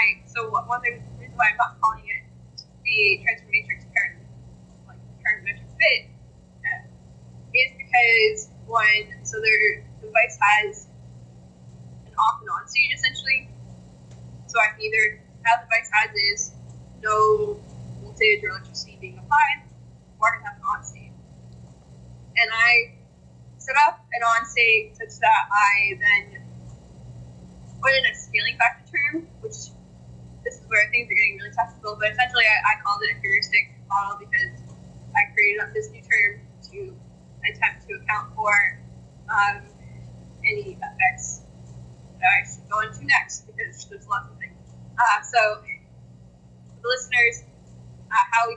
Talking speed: 140 wpm